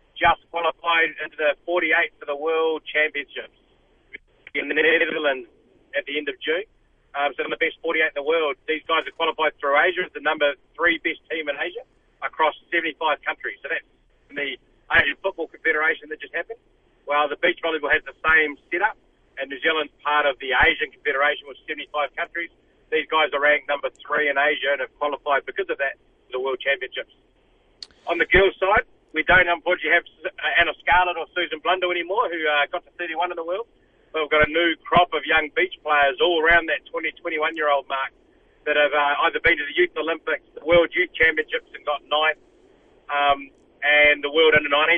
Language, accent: English, Australian